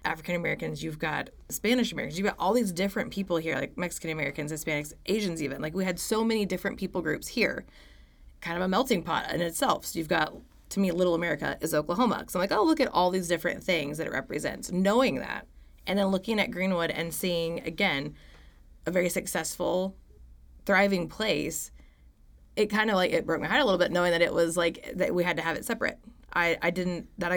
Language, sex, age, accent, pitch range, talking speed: English, female, 20-39, American, 165-200 Hz, 215 wpm